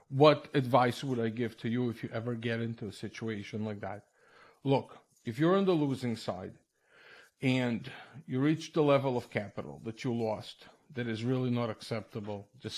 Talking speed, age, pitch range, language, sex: 185 wpm, 50-69, 110-125 Hz, English, male